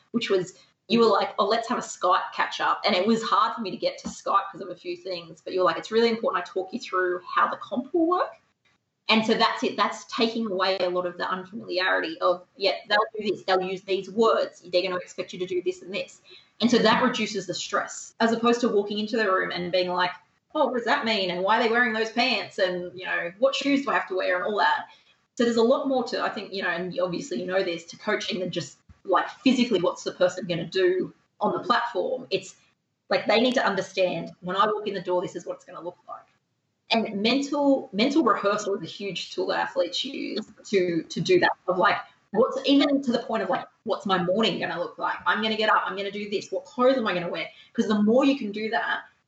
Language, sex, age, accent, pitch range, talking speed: English, female, 20-39, Australian, 185-235 Hz, 265 wpm